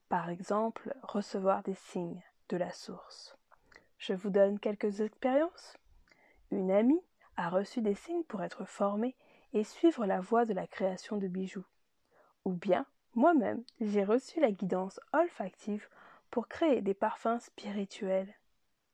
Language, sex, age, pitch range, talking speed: French, female, 20-39, 190-235 Hz, 140 wpm